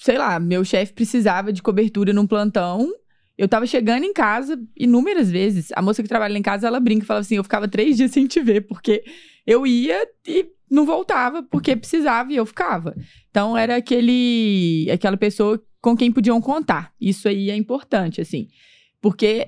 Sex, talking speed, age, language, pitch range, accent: female, 185 wpm, 20-39, English, 195-250 Hz, Brazilian